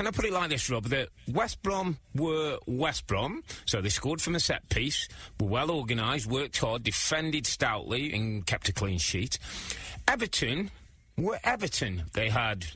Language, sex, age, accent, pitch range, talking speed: English, male, 30-49, British, 115-160 Hz, 165 wpm